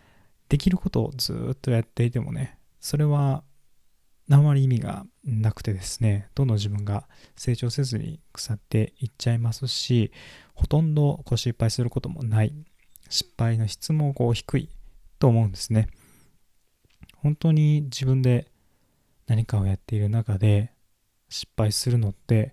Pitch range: 105-130 Hz